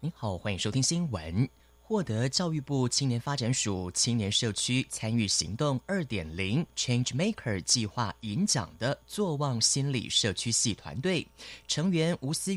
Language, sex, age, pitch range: Chinese, male, 30-49, 110-170 Hz